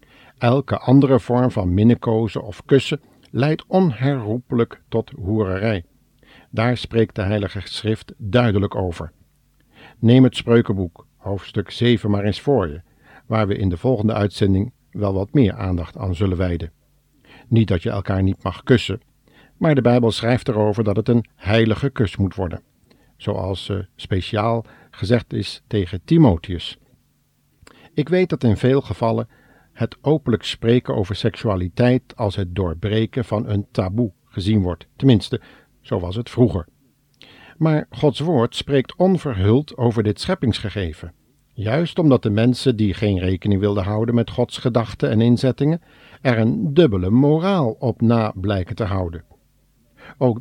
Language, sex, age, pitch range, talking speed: Dutch, male, 50-69, 100-130 Hz, 145 wpm